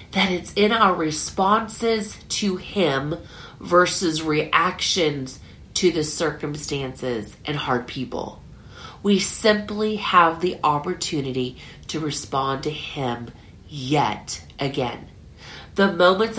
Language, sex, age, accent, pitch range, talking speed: English, female, 40-59, American, 140-205 Hz, 105 wpm